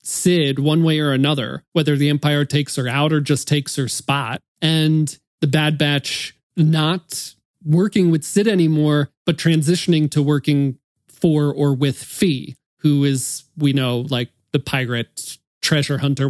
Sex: male